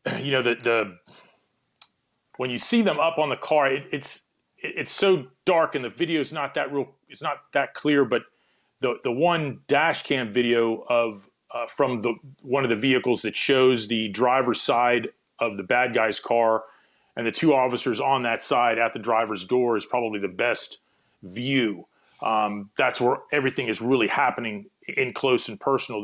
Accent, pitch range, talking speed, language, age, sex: American, 120-165 Hz, 185 wpm, English, 40-59, male